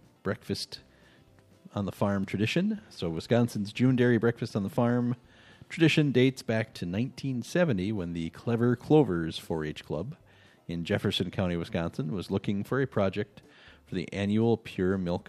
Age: 40-59